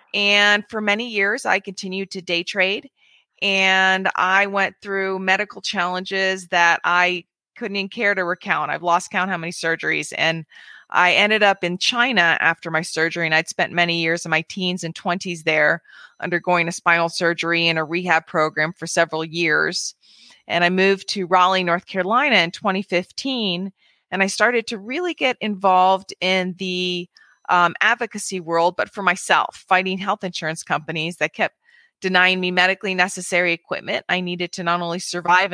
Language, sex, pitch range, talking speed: English, female, 175-205 Hz, 170 wpm